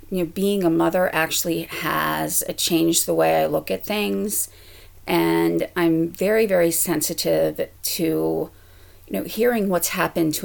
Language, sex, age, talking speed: English, female, 40-59, 150 wpm